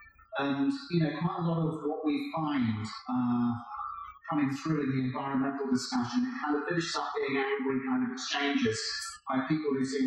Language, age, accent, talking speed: English, 30-49, British, 180 wpm